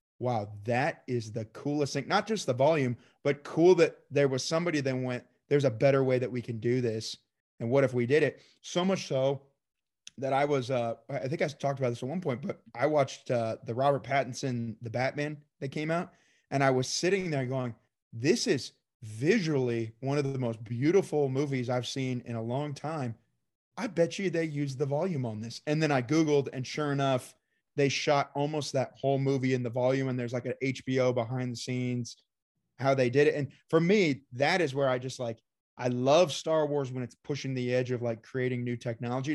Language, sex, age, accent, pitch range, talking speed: English, male, 30-49, American, 125-145 Hz, 215 wpm